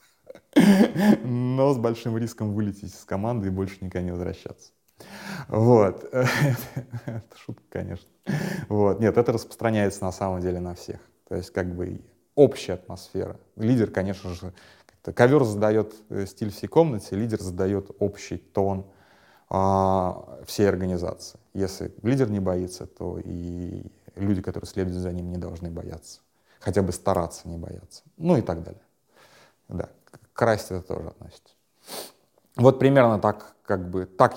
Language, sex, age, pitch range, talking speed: Russian, male, 30-49, 90-115 Hz, 140 wpm